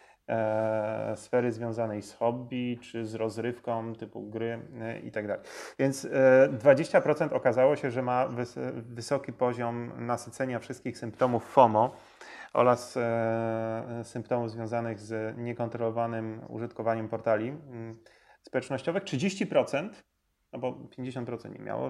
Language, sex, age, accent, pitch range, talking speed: Polish, male, 30-49, native, 110-125 Hz, 105 wpm